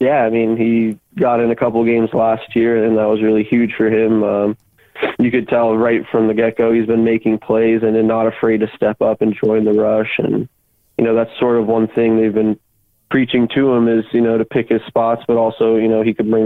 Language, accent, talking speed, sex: English, American, 250 wpm, male